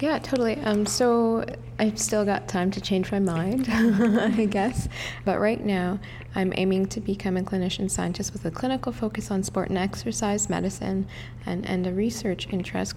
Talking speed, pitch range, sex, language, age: 175 wpm, 180-210 Hz, female, English, 20-39